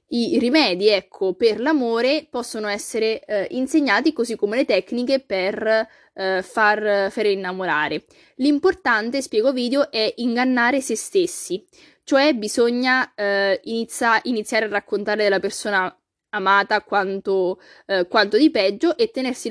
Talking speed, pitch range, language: 130 wpm, 195-265 Hz, Italian